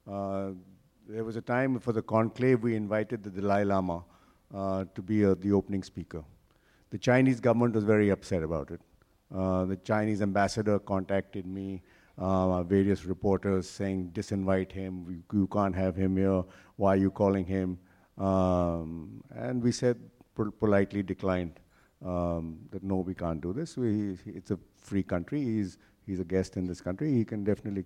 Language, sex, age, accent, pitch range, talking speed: English, male, 50-69, Indian, 95-110 Hz, 170 wpm